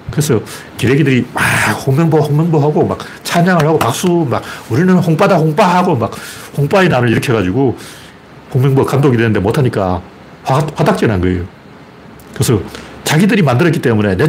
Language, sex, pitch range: Korean, male, 120-180 Hz